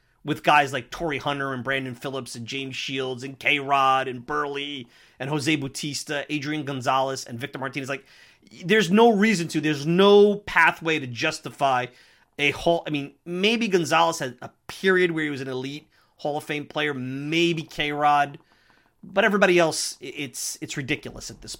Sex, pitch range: male, 135-180 Hz